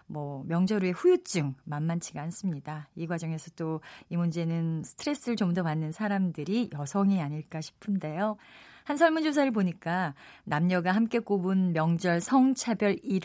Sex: female